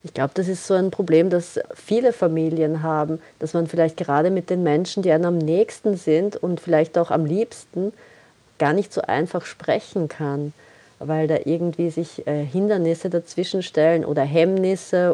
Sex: female